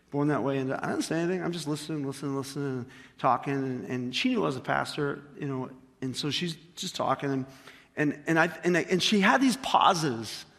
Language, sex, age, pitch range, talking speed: English, male, 30-49, 140-185 Hz, 230 wpm